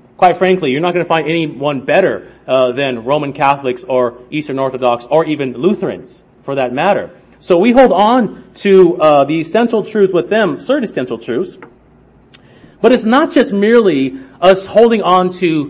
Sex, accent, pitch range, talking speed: male, American, 150-205 Hz, 170 wpm